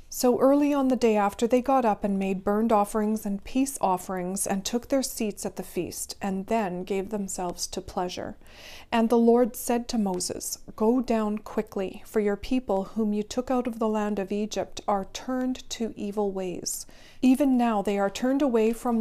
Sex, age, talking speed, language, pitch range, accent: female, 40-59, 195 wpm, English, 200-235 Hz, American